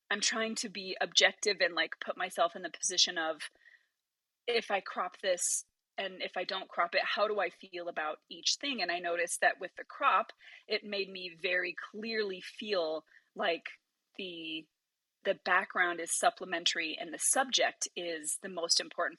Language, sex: English, female